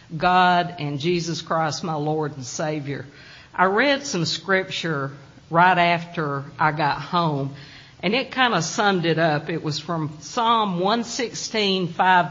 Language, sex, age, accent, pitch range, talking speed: English, female, 50-69, American, 150-195 Hz, 145 wpm